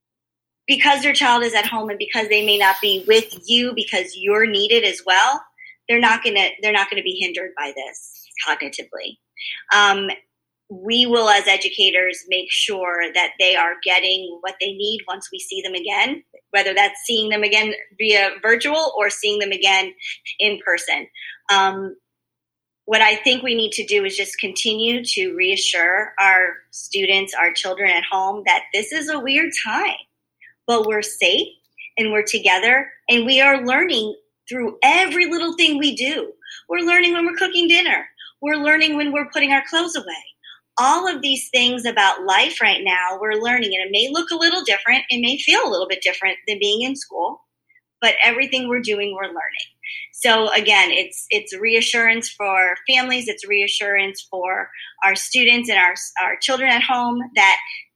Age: 20-39